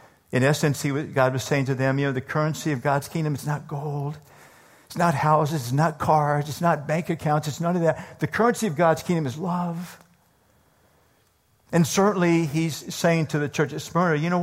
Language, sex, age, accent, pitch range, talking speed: English, male, 50-69, American, 135-170 Hz, 205 wpm